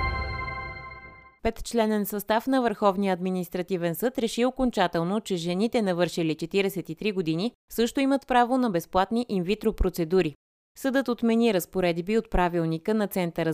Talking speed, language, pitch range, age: 120 wpm, Bulgarian, 165-225 Hz, 30-49